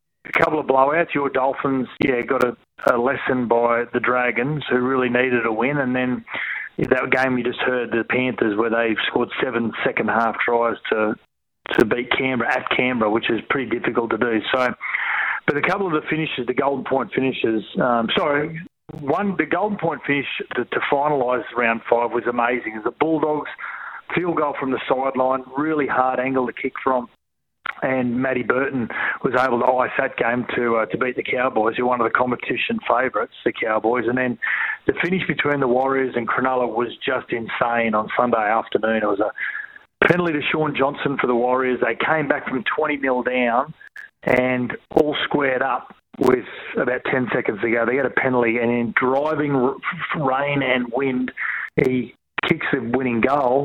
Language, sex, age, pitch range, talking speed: English, male, 40-59, 120-145 Hz, 185 wpm